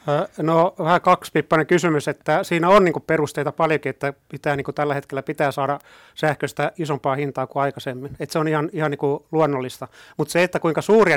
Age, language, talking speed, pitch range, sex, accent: 30-49, Finnish, 185 wpm, 135-160 Hz, male, native